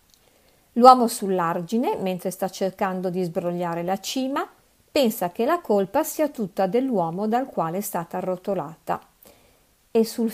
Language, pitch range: Italian, 190-240 Hz